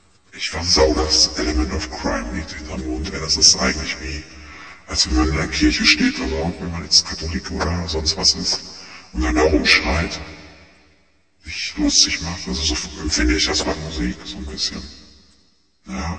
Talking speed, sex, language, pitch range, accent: 180 wpm, female, German, 80-95 Hz, German